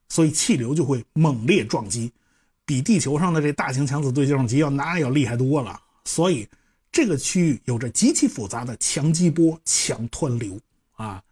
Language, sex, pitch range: Chinese, male, 125-200 Hz